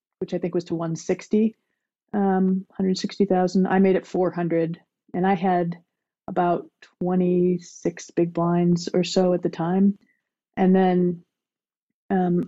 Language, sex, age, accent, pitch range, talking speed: English, female, 40-59, American, 170-205 Hz, 140 wpm